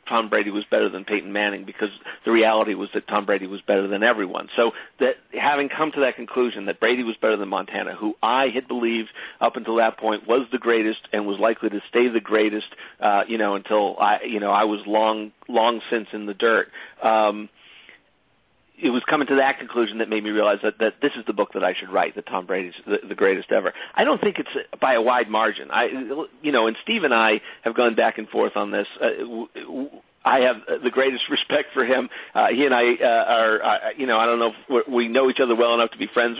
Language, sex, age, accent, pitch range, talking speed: English, male, 40-59, American, 110-130 Hz, 235 wpm